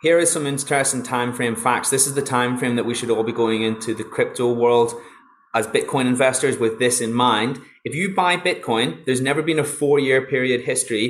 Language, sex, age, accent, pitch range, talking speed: English, male, 20-39, British, 120-150 Hz, 220 wpm